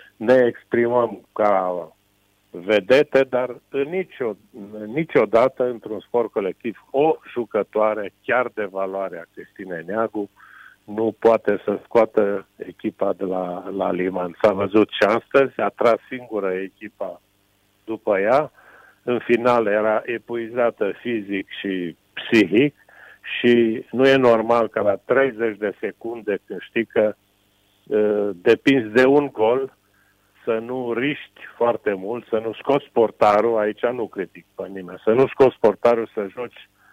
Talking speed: 130 wpm